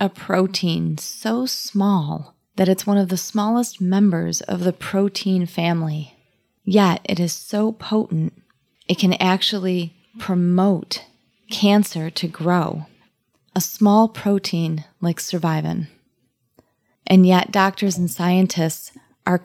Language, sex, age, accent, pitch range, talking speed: English, female, 30-49, American, 165-195 Hz, 115 wpm